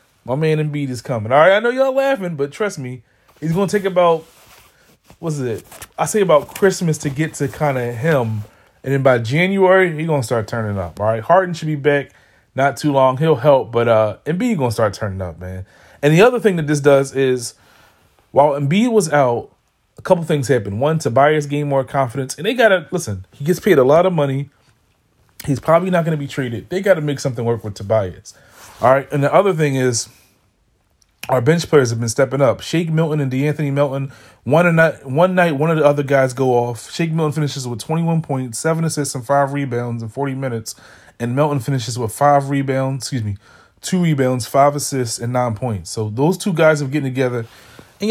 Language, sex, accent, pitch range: English, male, American, 115-155 Hz